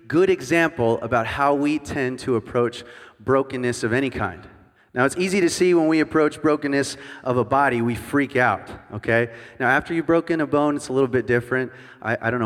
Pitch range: 120-145 Hz